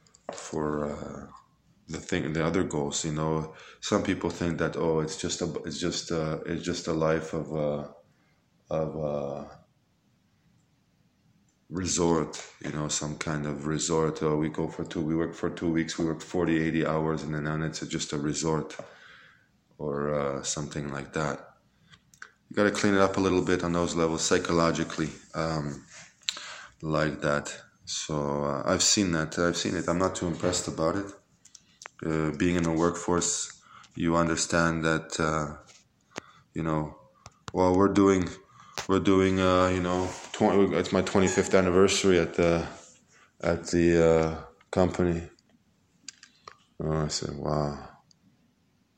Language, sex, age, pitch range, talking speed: Hebrew, male, 20-39, 75-90 Hz, 155 wpm